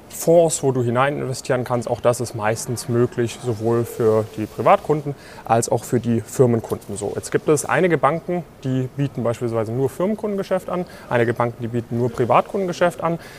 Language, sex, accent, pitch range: German, male, German, 115-145 Hz